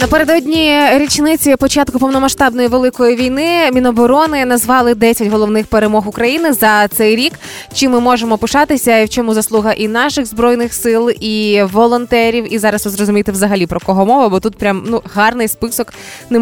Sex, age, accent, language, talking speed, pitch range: female, 20-39, native, Ukrainian, 155 wpm, 205-250 Hz